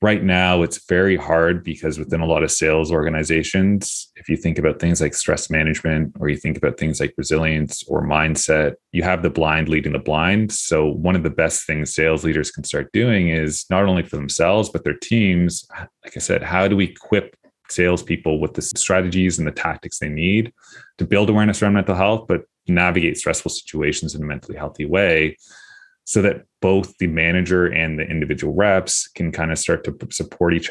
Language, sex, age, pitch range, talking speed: English, male, 30-49, 80-90 Hz, 200 wpm